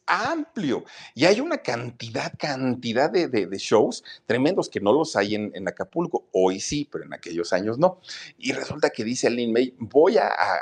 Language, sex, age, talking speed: Spanish, male, 40-59, 190 wpm